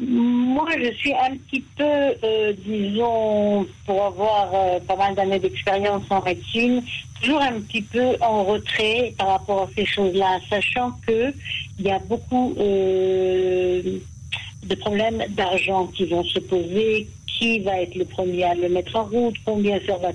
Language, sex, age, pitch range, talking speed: French, female, 60-79, 180-210 Hz, 160 wpm